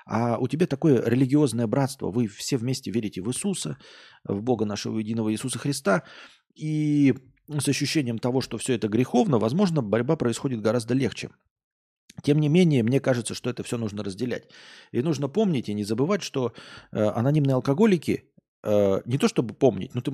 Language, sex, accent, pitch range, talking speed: Russian, male, native, 115-145 Hz, 165 wpm